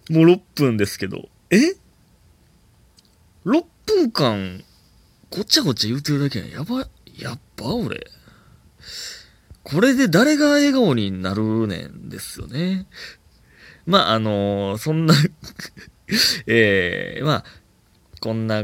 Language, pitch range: Japanese, 100-160 Hz